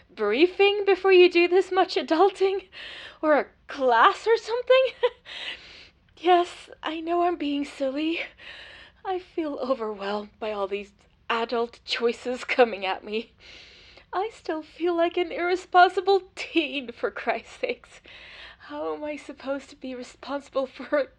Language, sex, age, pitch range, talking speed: English, female, 20-39, 215-355 Hz, 135 wpm